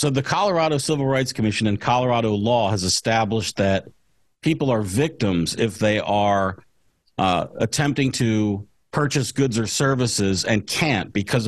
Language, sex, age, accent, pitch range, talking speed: English, male, 50-69, American, 110-140 Hz, 145 wpm